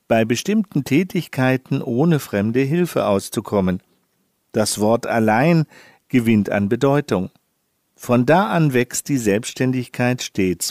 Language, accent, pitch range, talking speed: German, German, 110-155 Hz, 110 wpm